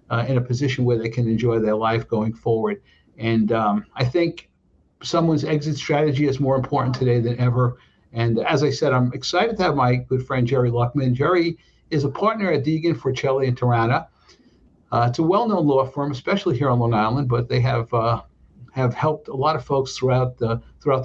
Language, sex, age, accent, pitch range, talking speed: English, male, 60-79, American, 120-145 Hz, 205 wpm